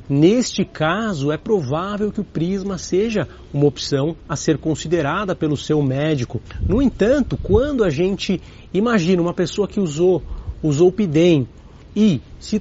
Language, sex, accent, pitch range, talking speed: Portuguese, male, Brazilian, 140-185 Hz, 150 wpm